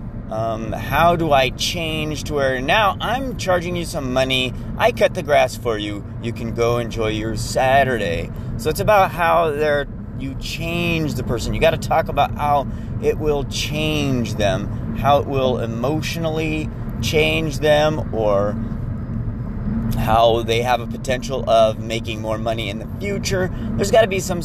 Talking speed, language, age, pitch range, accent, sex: 165 wpm, English, 30-49, 115-145 Hz, American, male